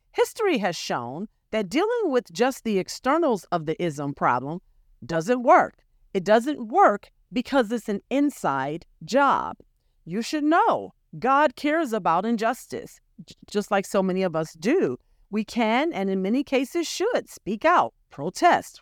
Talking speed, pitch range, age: 150 wpm, 185-295 Hz, 40-59